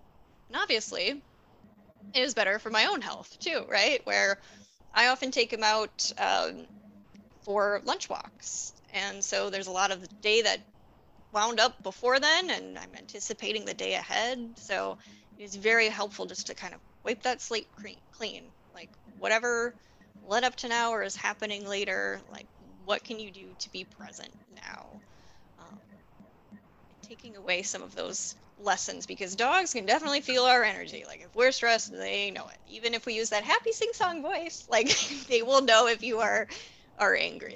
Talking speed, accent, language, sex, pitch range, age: 175 wpm, American, English, female, 205-255 Hz, 10-29